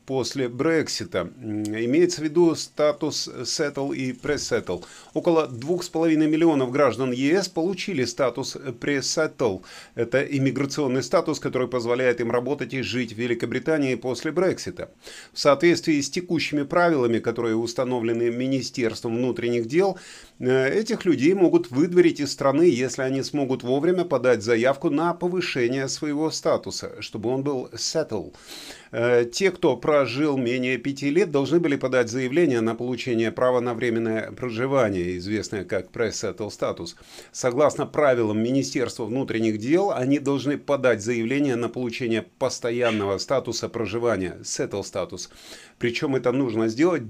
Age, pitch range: 30-49, 120-150 Hz